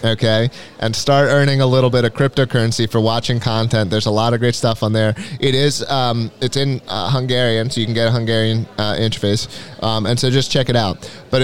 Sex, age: male, 20-39